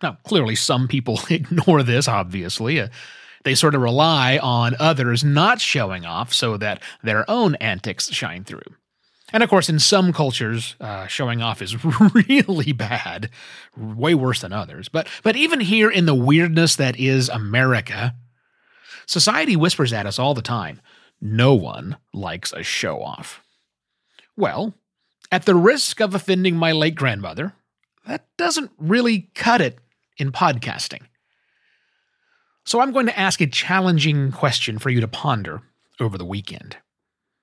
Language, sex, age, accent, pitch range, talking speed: English, male, 30-49, American, 125-195 Hz, 150 wpm